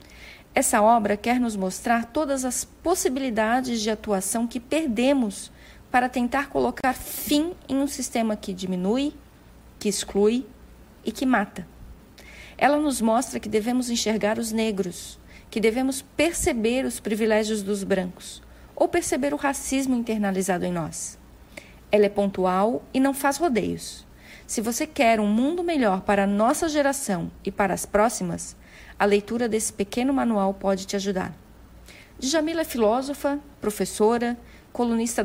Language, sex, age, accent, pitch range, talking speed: Portuguese, female, 40-59, Brazilian, 200-270 Hz, 140 wpm